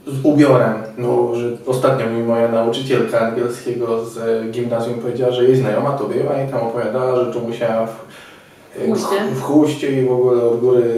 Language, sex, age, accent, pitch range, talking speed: Polish, male, 20-39, native, 115-125 Hz, 165 wpm